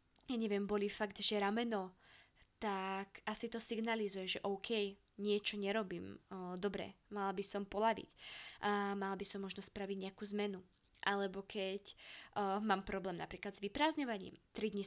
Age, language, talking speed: 20-39, Slovak, 155 wpm